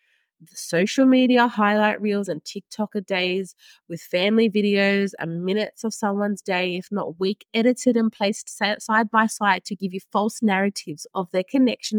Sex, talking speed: female, 165 wpm